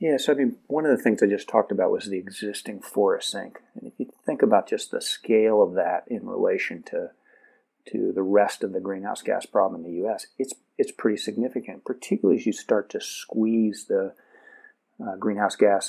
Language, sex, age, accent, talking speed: English, male, 40-59, American, 210 wpm